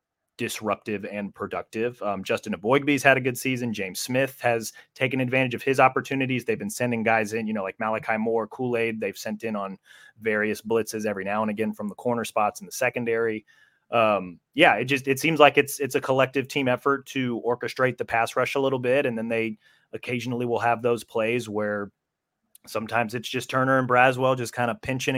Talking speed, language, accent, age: 205 wpm, English, American, 30-49